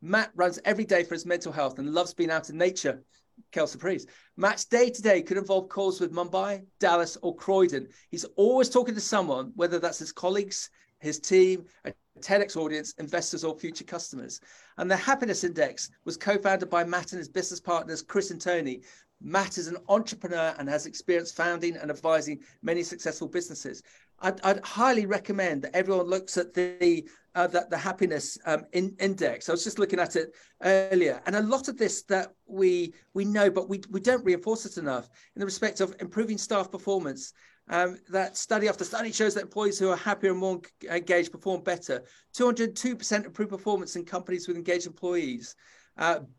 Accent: British